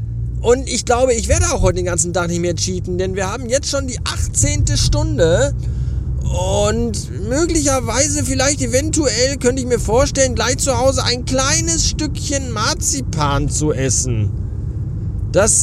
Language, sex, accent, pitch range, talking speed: German, male, German, 95-120 Hz, 150 wpm